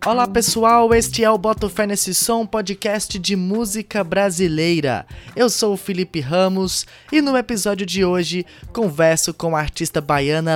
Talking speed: 160 wpm